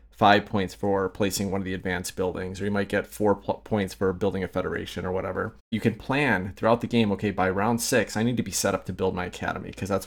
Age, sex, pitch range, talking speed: 30-49, male, 95-115 Hz, 255 wpm